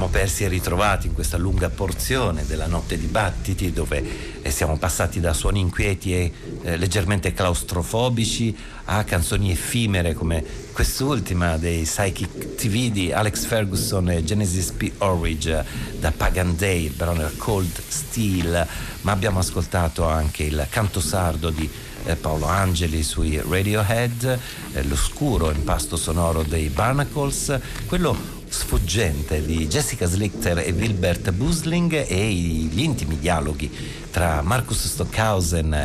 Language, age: Italian, 60-79